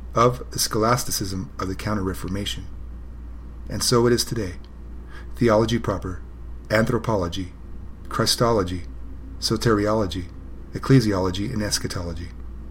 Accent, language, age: American, English, 30-49